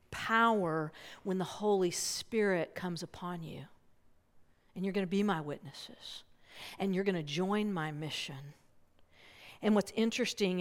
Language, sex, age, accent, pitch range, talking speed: English, female, 50-69, American, 175-205 Hz, 140 wpm